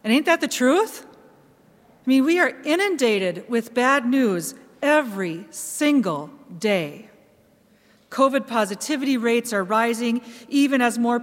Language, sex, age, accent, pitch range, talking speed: English, female, 40-59, American, 200-245 Hz, 130 wpm